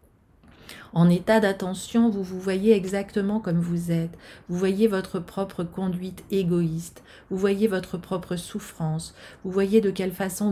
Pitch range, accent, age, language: 170-205 Hz, French, 40-59, French